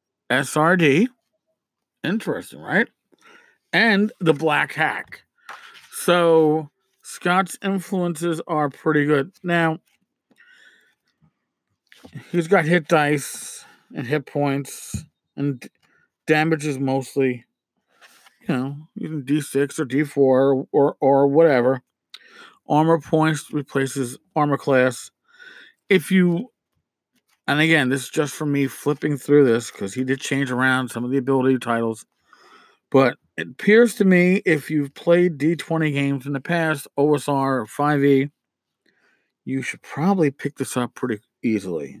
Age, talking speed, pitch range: 50-69, 125 wpm, 135-165 Hz